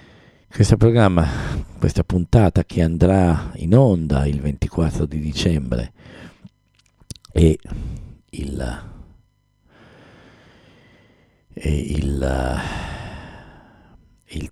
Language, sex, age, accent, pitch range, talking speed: English, male, 50-69, Italian, 80-95 Hz, 60 wpm